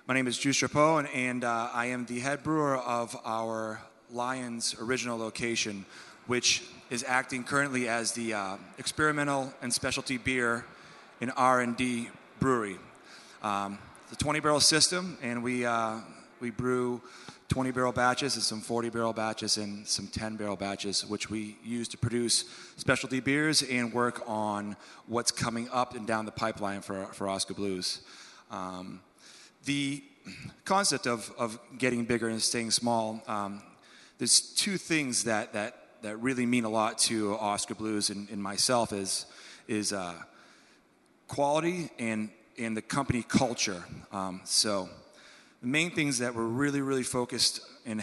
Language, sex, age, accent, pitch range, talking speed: English, male, 30-49, American, 110-130 Hz, 150 wpm